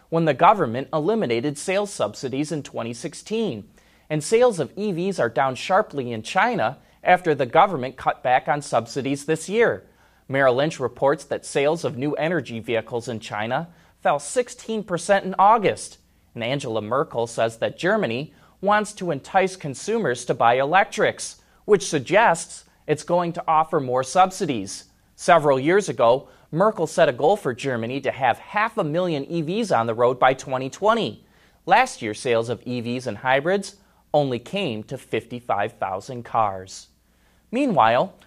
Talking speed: 150 wpm